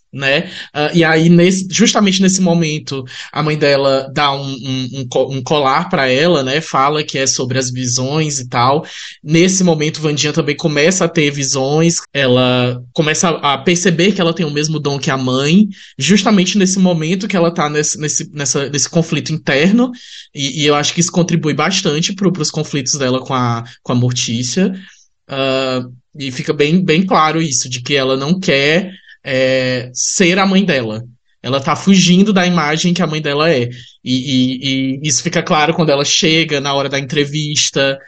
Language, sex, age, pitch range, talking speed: Portuguese, male, 20-39, 135-170 Hz, 180 wpm